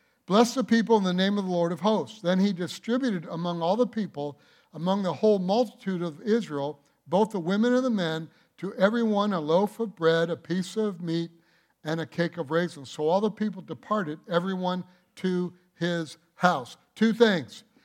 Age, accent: 60-79, American